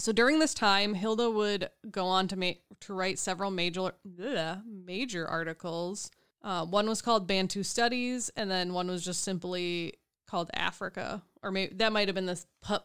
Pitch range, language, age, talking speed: 180-210 Hz, English, 20-39, 180 wpm